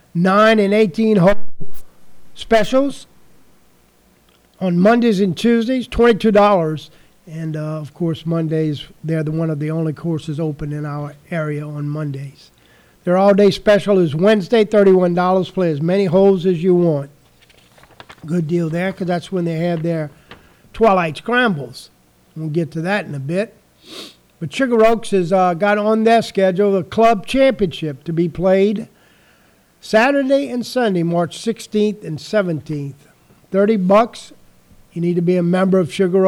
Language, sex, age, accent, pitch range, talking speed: English, male, 50-69, American, 155-200 Hz, 150 wpm